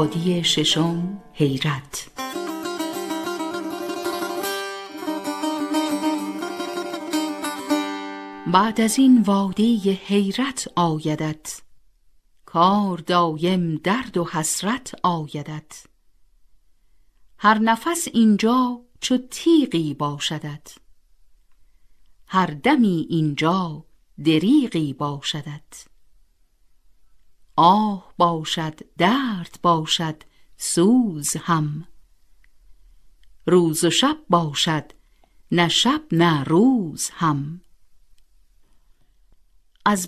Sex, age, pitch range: female, 50-69, 155-225 Hz